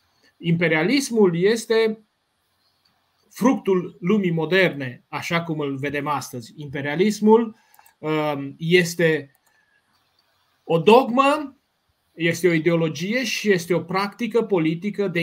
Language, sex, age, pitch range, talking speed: Romanian, male, 30-49, 155-210 Hz, 90 wpm